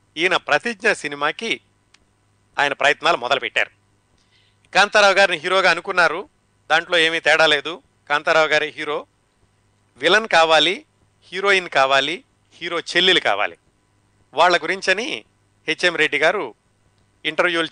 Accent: native